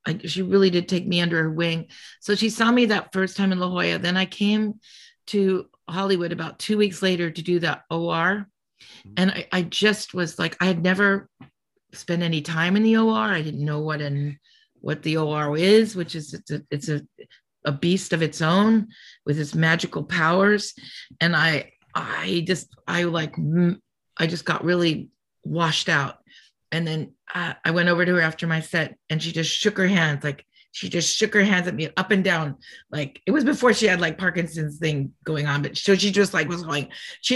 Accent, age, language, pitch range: American, 40-59, English, 165-205 Hz